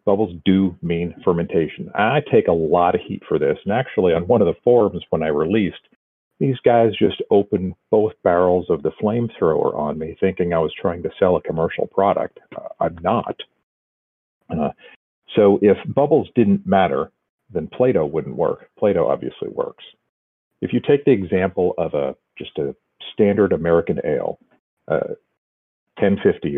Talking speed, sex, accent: 160 wpm, male, American